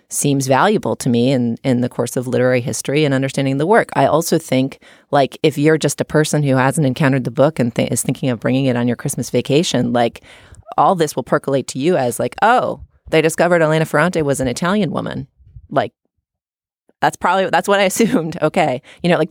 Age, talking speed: 30-49, 215 wpm